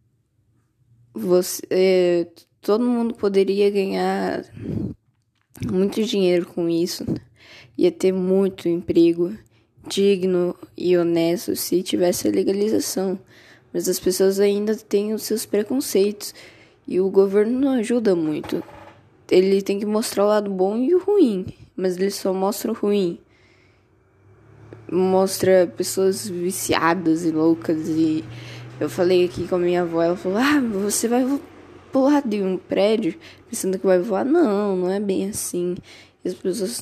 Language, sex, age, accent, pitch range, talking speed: Portuguese, female, 10-29, Brazilian, 170-205 Hz, 140 wpm